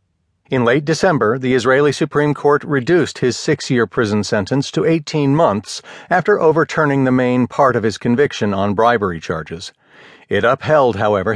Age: 50-69